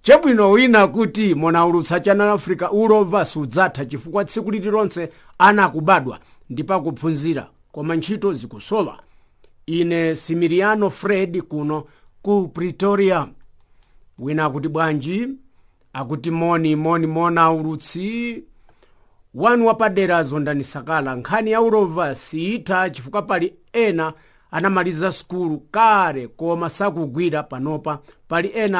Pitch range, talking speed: 155-200 Hz, 110 wpm